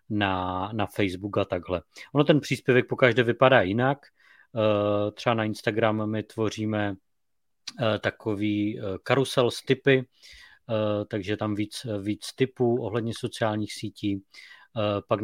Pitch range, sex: 100-115 Hz, male